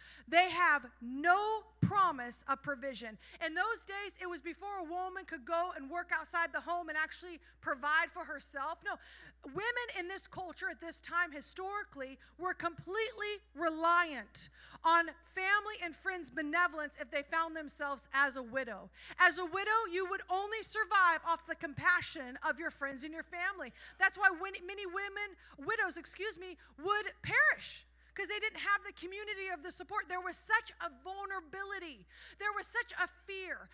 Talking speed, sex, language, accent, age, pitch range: 165 wpm, female, English, American, 30-49, 305-400 Hz